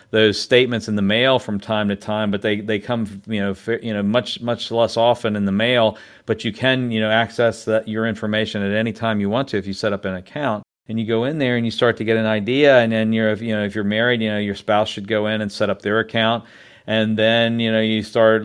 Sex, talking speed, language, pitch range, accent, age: male, 275 wpm, English, 105-115 Hz, American, 40-59